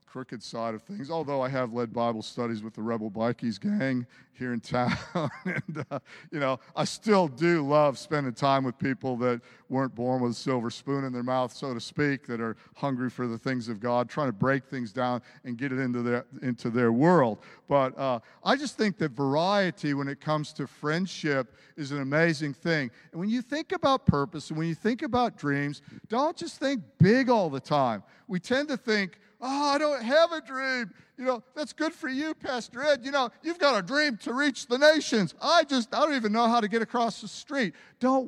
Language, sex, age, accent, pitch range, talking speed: English, male, 50-69, American, 135-225 Hz, 220 wpm